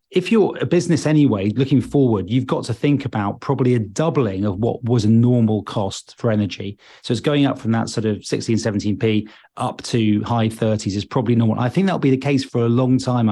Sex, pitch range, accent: male, 110-140 Hz, British